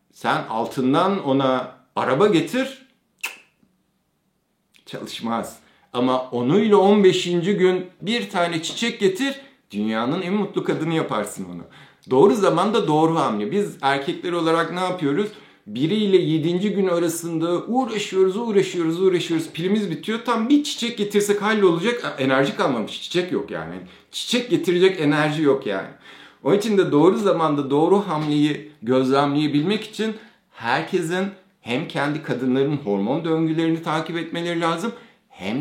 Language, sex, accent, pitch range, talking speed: Turkish, male, native, 125-195 Hz, 125 wpm